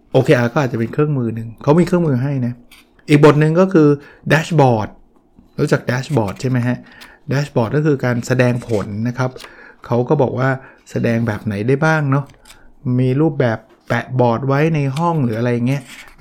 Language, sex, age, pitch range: Thai, male, 60-79, 115-140 Hz